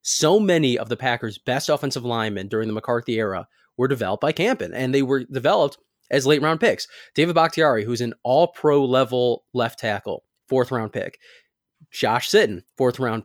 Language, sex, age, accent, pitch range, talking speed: English, male, 20-39, American, 115-140 Hz, 160 wpm